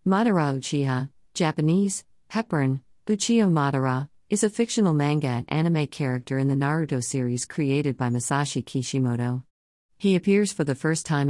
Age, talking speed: 50-69, 145 wpm